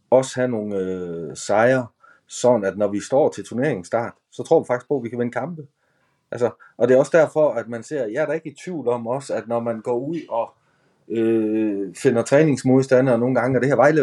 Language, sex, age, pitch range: Danish, male, 30-49, 110-140 Hz